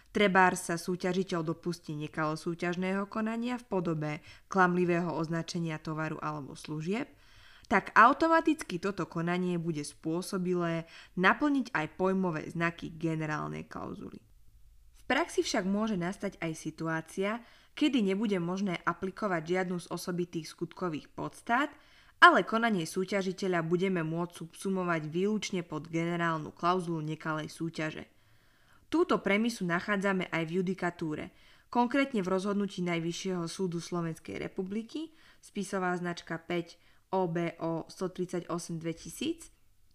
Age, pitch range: 20-39, 165-200 Hz